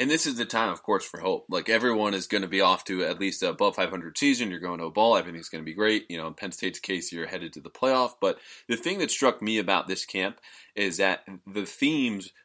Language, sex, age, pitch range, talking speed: English, male, 20-39, 90-115 Hz, 270 wpm